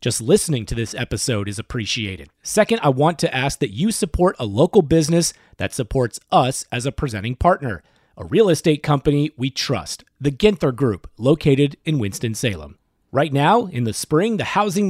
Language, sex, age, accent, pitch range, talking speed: English, male, 30-49, American, 125-175 Hz, 175 wpm